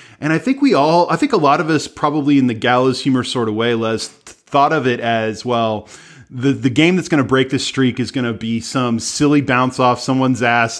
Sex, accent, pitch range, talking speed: male, American, 125-180 Hz, 235 wpm